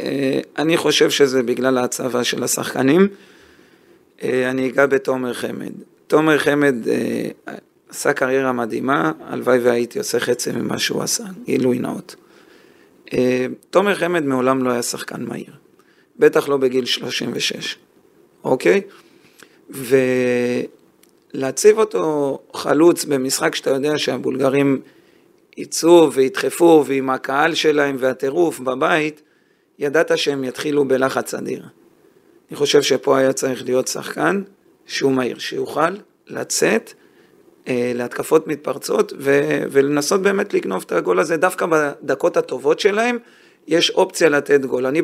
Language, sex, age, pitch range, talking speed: Hebrew, male, 40-59, 130-205 Hz, 120 wpm